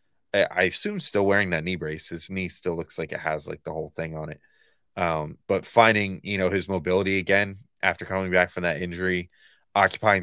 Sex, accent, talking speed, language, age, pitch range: male, American, 205 wpm, English, 20-39, 80-100 Hz